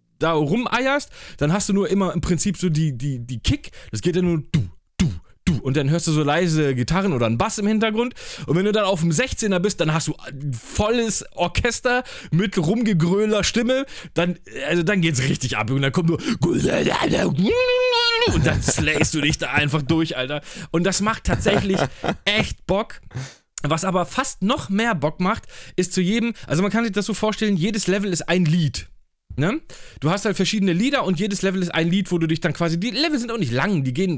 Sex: male